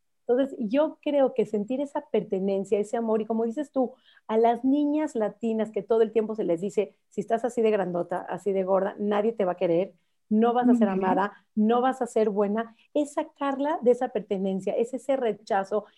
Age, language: 40-59, Spanish